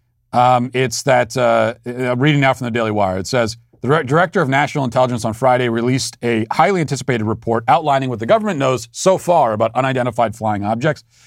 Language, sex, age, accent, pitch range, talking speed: English, male, 40-59, American, 115-130 Hz, 195 wpm